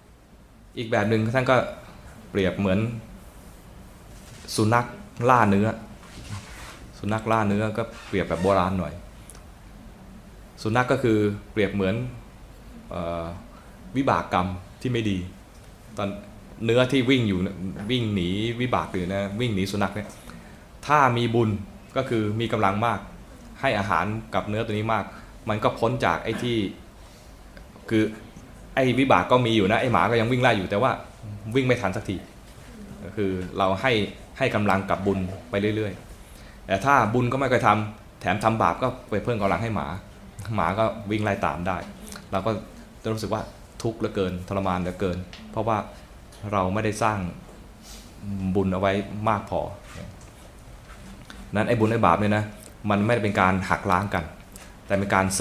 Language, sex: Thai, male